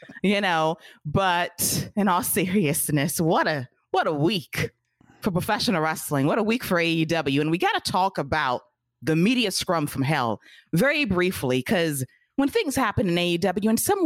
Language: English